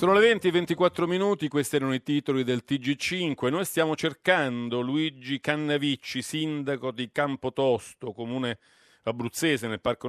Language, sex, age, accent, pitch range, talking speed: Italian, male, 40-59, native, 120-155 Hz, 145 wpm